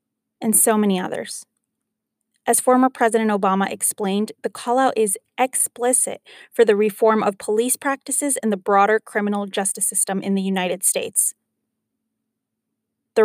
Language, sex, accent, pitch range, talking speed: English, female, American, 210-240 Hz, 135 wpm